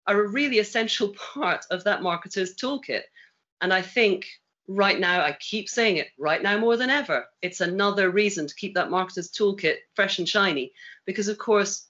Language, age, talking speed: English, 40-59, 185 wpm